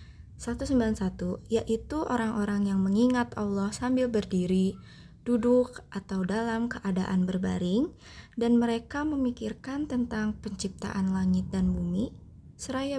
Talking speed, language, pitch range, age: 100 wpm, English, 190-235 Hz, 20-39